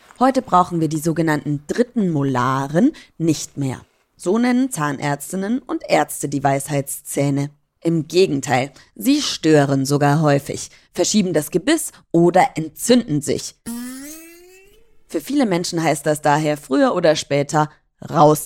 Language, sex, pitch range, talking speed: German, female, 145-215 Hz, 125 wpm